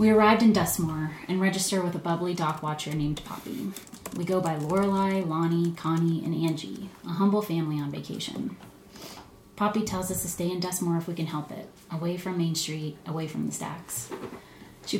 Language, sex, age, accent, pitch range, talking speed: English, female, 30-49, American, 165-195 Hz, 190 wpm